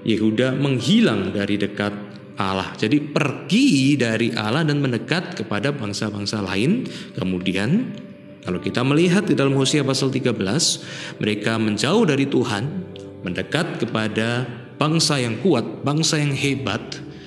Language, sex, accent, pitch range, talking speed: Indonesian, male, native, 110-145 Hz, 120 wpm